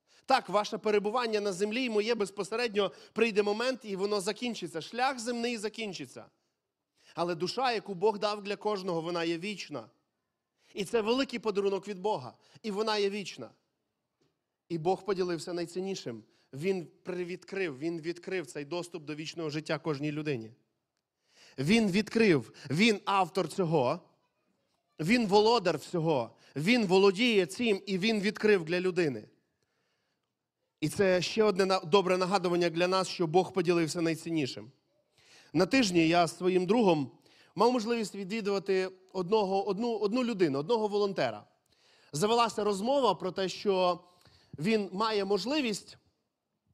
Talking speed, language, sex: 130 wpm, Ukrainian, male